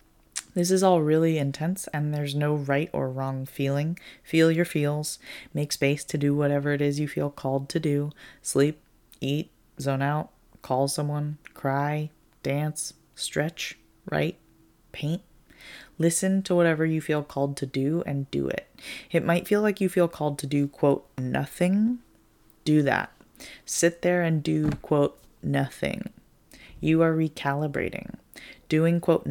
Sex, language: female, English